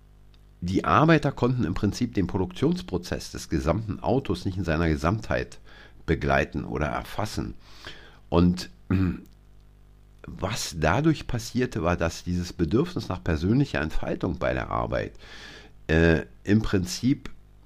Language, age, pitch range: German, 50-69, 85-110 Hz